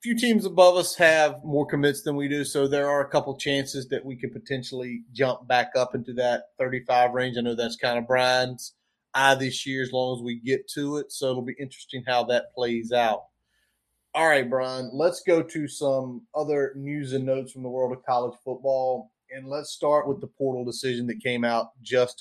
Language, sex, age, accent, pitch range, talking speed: English, male, 30-49, American, 125-145 Hz, 215 wpm